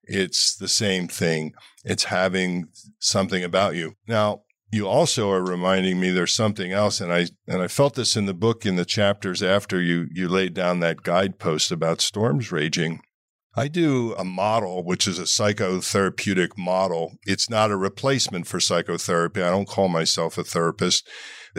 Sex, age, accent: male, 50-69, American